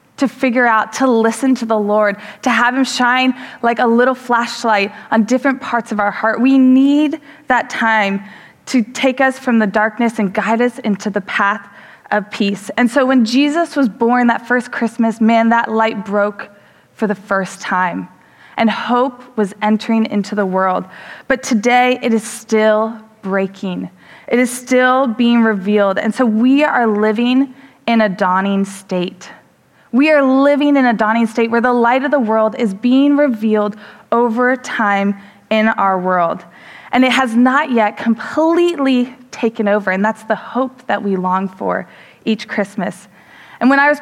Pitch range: 205-255 Hz